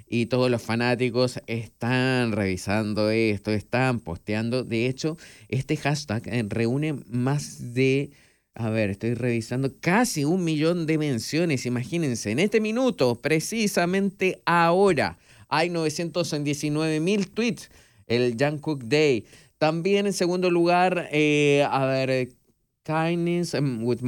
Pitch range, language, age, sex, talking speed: 120-165 Hz, Spanish, 30-49, male, 115 wpm